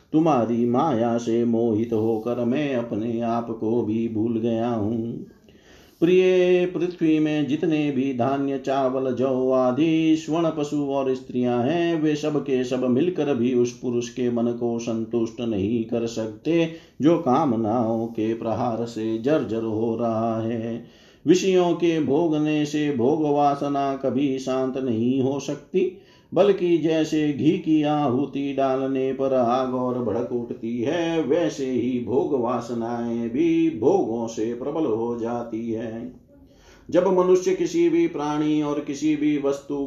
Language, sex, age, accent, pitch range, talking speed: Hindi, male, 50-69, native, 115-150 Hz, 145 wpm